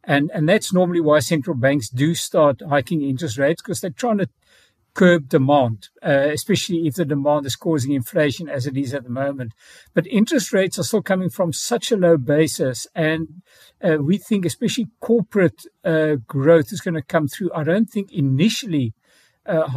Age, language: 60-79, English